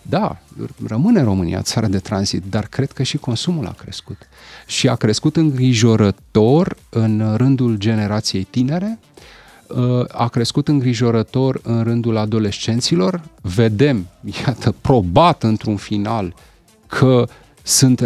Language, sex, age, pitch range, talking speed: Romanian, male, 30-49, 110-155 Hz, 115 wpm